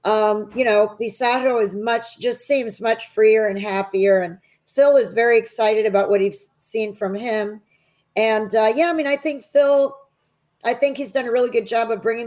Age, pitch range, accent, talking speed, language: 40-59, 205-245 Hz, American, 200 wpm, English